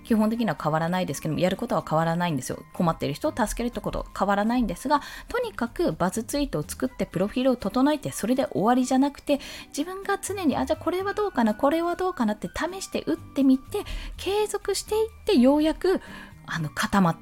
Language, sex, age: Japanese, female, 20-39